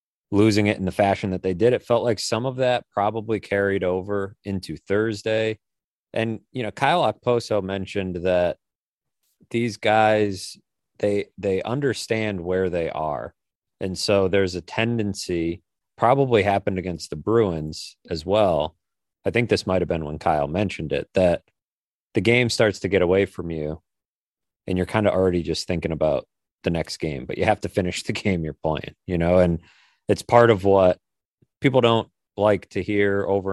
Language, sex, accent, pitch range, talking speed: English, male, American, 85-105 Hz, 175 wpm